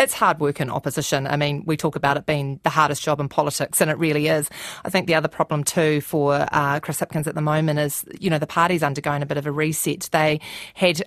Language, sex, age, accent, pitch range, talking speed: English, female, 30-49, Australian, 155-180 Hz, 255 wpm